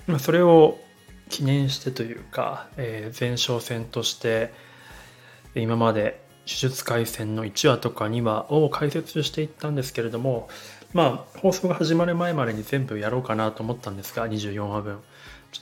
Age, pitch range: 20-39, 115-140 Hz